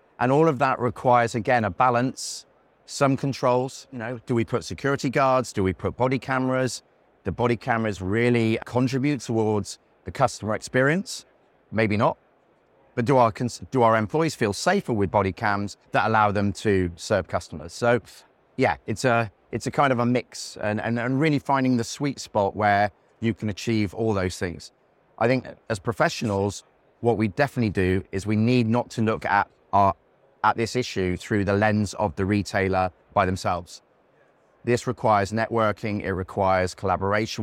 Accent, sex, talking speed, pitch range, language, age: British, male, 175 wpm, 95-125 Hz, English, 30-49